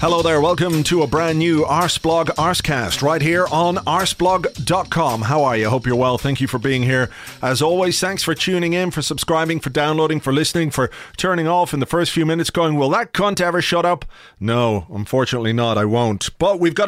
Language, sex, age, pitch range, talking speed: English, male, 40-59, 135-180 Hz, 210 wpm